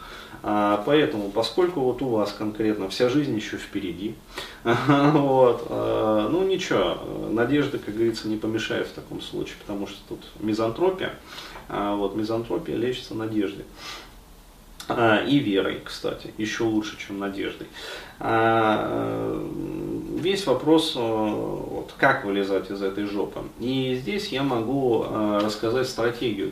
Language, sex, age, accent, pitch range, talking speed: Russian, male, 30-49, native, 105-125 Hz, 120 wpm